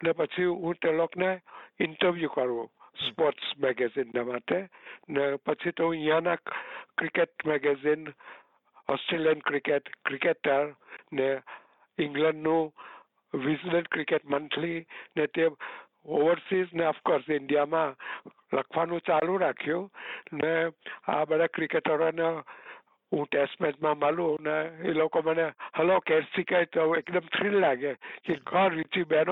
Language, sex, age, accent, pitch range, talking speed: Gujarati, male, 60-79, native, 150-175 Hz, 35 wpm